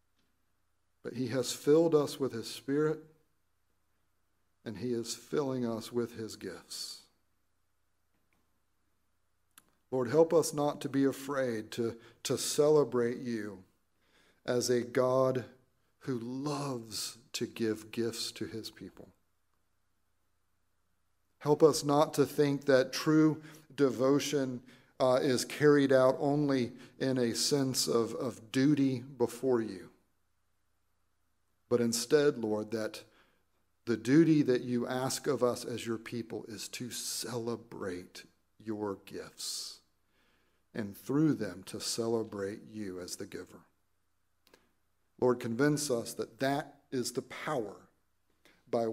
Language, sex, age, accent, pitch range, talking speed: English, male, 50-69, American, 95-130 Hz, 120 wpm